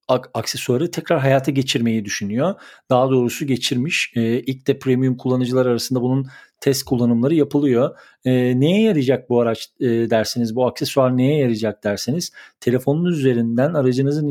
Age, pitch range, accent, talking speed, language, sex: 50-69, 115-145 Hz, native, 140 wpm, Turkish, male